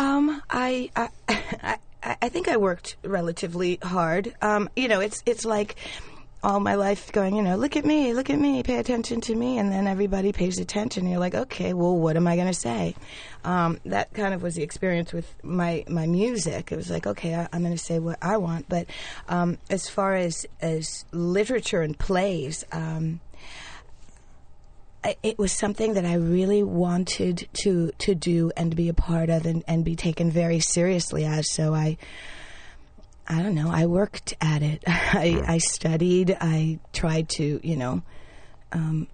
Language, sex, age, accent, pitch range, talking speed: English, female, 30-49, American, 165-200 Hz, 185 wpm